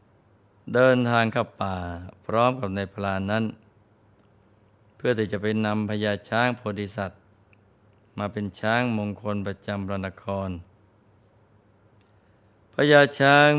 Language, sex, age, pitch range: Thai, male, 20-39, 100-110 Hz